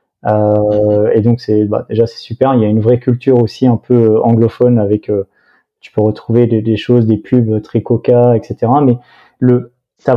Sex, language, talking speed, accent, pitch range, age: male, French, 200 wpm, French, 115-130 Hz, 20-39